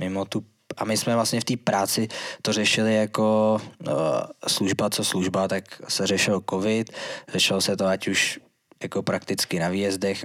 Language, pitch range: Czech, 95-100 Hz